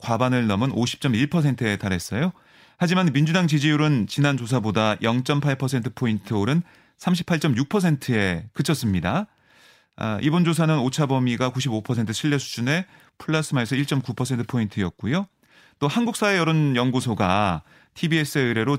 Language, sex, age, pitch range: Korean, male, 30-49, 120-160 Hz